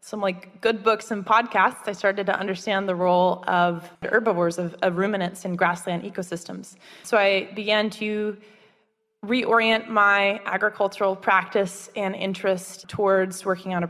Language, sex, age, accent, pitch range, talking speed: English, female, 20-39, American, 180-205 Hz, 145 wpm